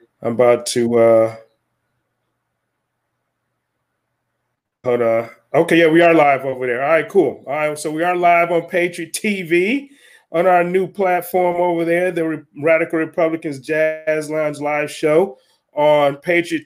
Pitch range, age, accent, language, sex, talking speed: 135-165 Hz, 30-49, American, English, male, 150 wpm